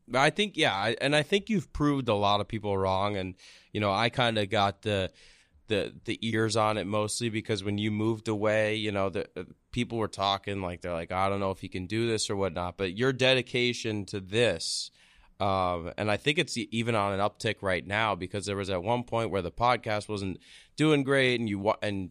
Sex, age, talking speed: male, 20-39, 230 wpm